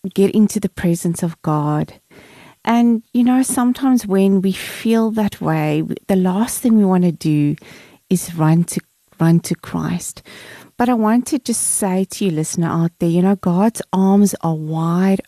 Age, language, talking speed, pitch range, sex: 30-49, English, 175 wpm, 175-225 Hz, female